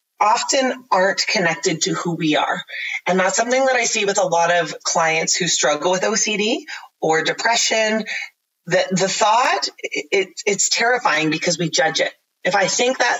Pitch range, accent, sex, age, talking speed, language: 165-215 Hz, American, female, 30-49, 170 wpm, English